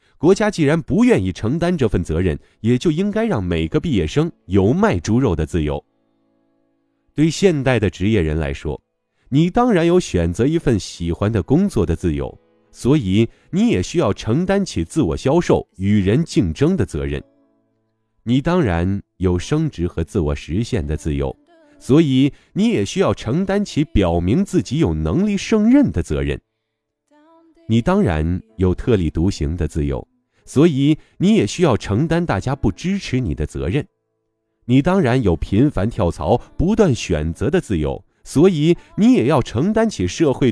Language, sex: Chinese, male